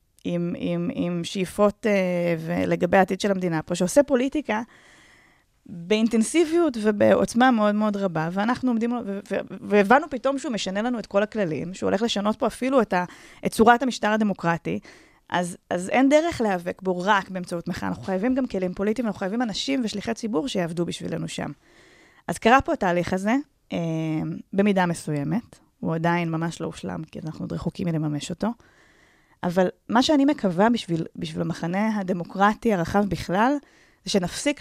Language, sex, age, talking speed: Hebrew, female, 20-39, 160 wpm